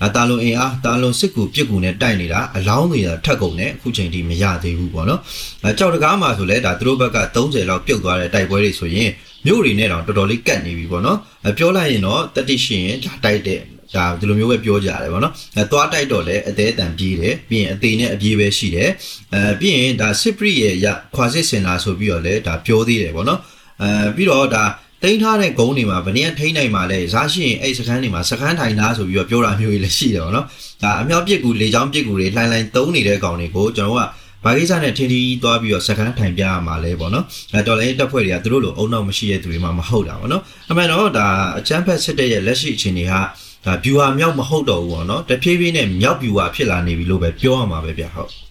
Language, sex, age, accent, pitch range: English, male, 30-49, Malaysian, 95-125 Hz